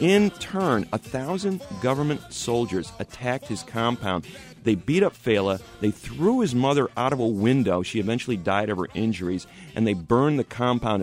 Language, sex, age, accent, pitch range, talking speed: English, male, 40-59, American, 100-135 Hz, 175 wpm